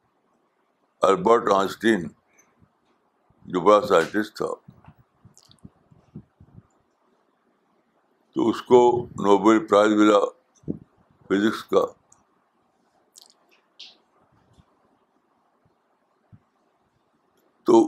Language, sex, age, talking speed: Urdu, male, 60-79, 50 wpm